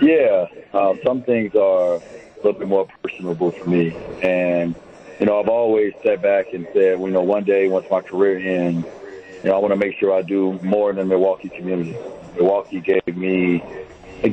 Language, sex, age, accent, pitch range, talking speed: English, male, 40-59, American, 95-110 Hz, 200 wpm